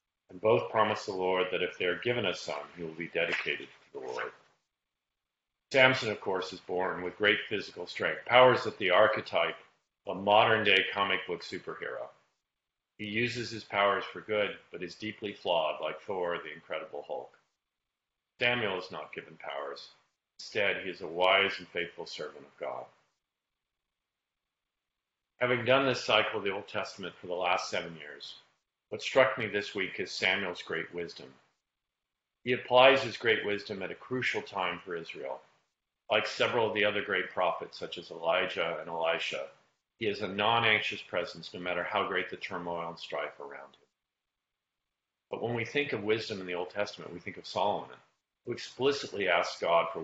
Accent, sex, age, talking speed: American, male, 50-69, 175 wpm